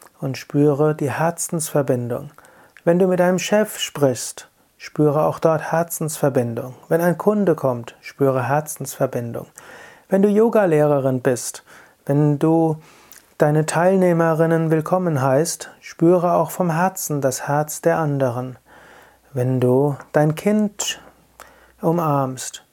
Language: German